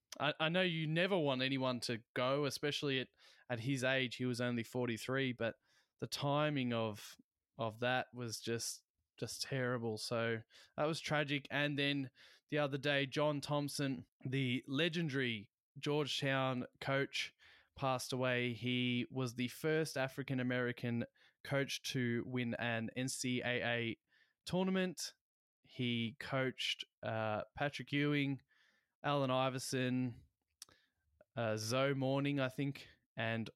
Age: 20-39